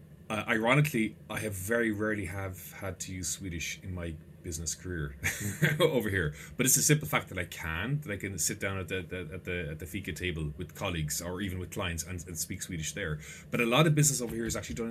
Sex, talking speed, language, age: male, 240 wpm, English, 30-49